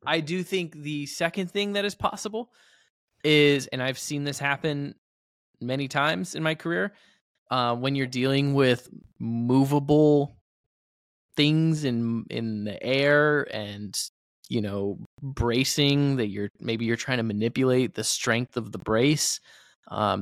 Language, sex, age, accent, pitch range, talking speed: English, male, 20-39, American, 115-150 Hz, 140 wpm